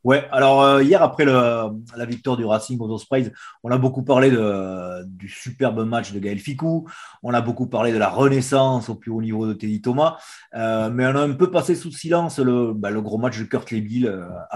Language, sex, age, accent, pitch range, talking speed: French, male, 30-49, French, 110-135 Hz, 225 wpm